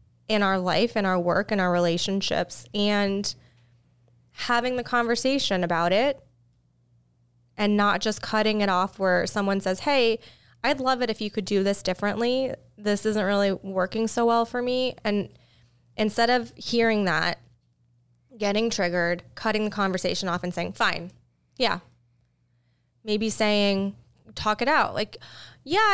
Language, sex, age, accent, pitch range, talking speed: English, female, 20-39, American, 180-230 Hz, 150 wpm